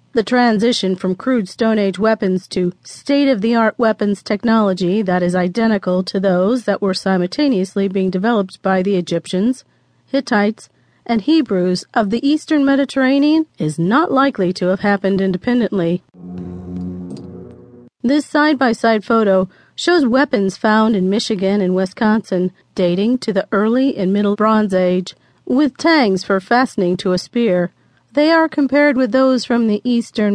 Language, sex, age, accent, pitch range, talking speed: English, female, 40-59, American, 185-255 Hz, 140 wpm